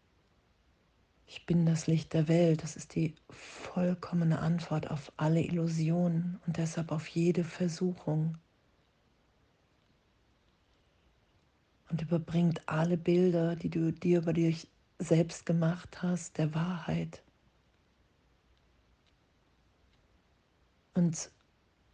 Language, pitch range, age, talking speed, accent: German, 150-165 Hz, 40-59, 95 wpm, German